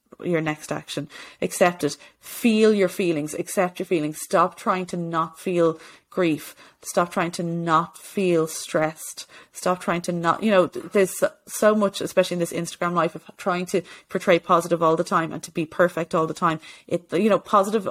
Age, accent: 30-49, Irish